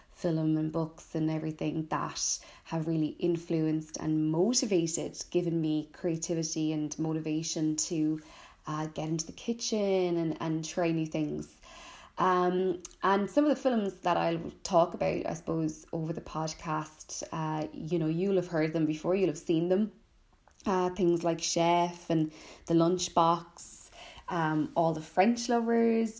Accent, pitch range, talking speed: Irish, 165-185 Hz, 150 wpm